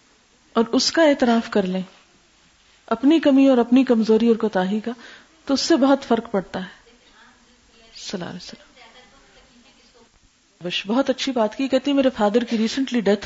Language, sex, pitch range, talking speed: Urdu, female, 220-260 Hz, 145 wpm